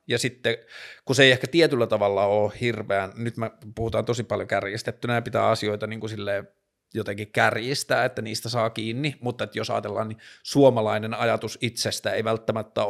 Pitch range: 110-130 Hz